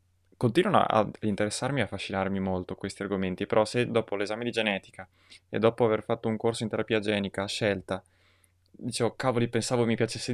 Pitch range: 95-110 Hz